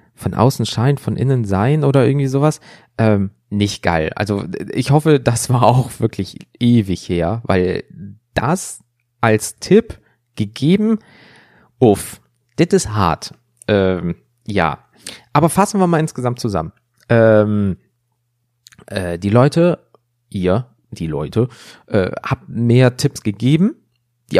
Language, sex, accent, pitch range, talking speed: German, male, German, 105-145 Hz, 125 wpm